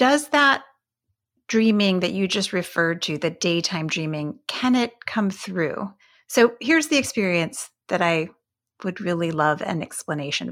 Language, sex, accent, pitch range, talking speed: English, female, American, 170-235 Hz, 150 wpm